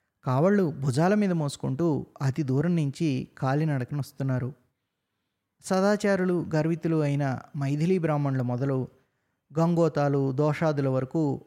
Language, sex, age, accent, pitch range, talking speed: Telugu, male, 20-39, native, 130-175 Hz, 90 wpm